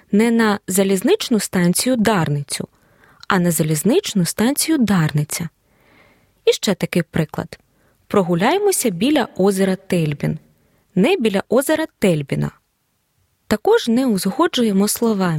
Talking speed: 100 wpm